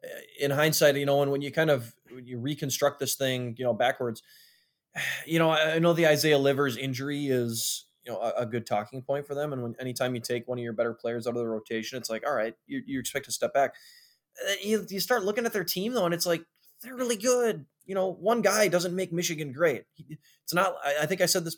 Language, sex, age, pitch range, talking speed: English, male, 20-39, 125-170 Hz, 245 wpm